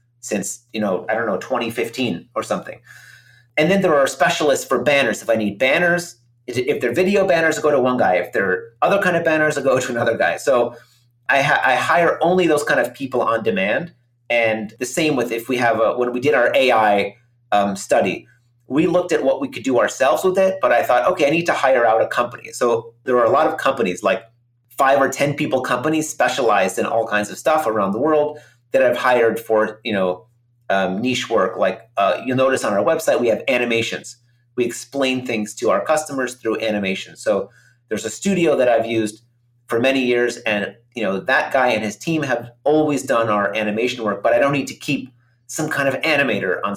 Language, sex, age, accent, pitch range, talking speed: English, male, 30-49, American, 115-140 Hz, 215 wpm